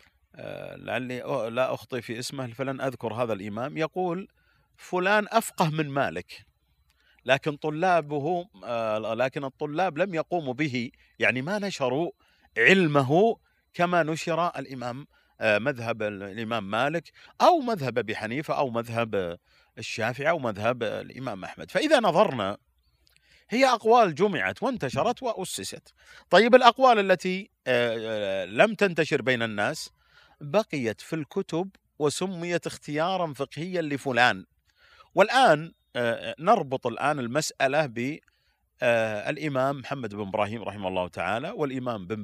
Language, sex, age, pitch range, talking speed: Arabic, male, 40-59, 115-175 Hz, 110 wpm